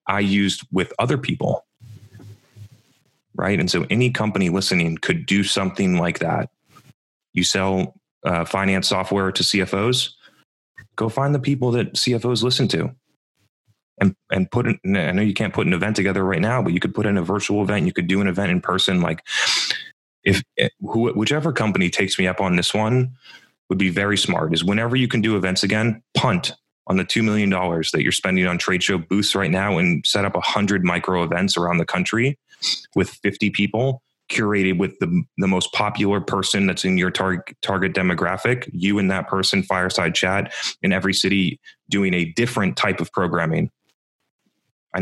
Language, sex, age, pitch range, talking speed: English, male, 30-49, 95-110 Hz, 180 wpm